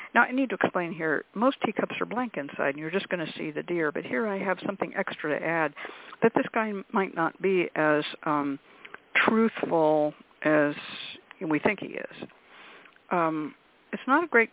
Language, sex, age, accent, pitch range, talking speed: English, female, 60-79, American, 170-230 Hz, 190 wpm